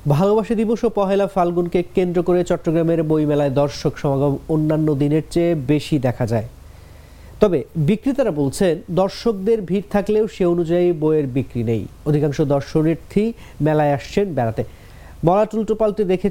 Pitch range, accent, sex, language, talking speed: 135-180 Hz, Indian, male, English, 130 wpm